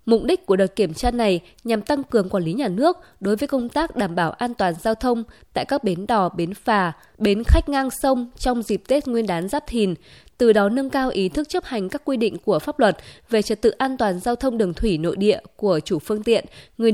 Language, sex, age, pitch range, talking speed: Vietnamese, female, 20-39, 195-260 Hz, 250 wpm